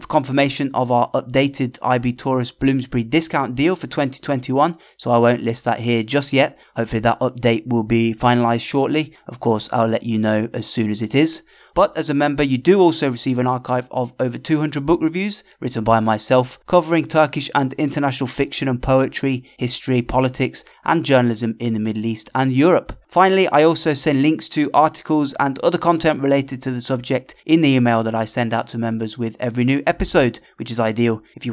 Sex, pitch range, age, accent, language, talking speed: male, 120-150 Hz, 20-39, British, English, 200 wpm